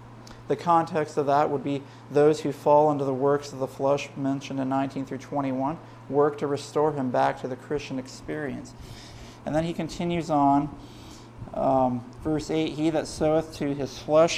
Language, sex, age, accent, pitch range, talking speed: English, male, 40-59, American, 135-175 Hz, 180 wpm